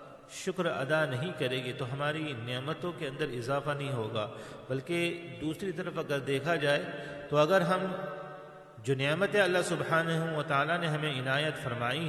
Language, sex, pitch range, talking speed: English, male, 135-165 Hz, 150 wpm